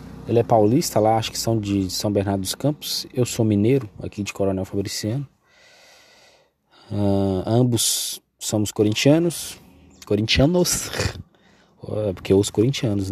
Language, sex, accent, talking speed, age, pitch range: Portuguese, male, Brazilian, 120 wpm, 20-39, 100-115 Hz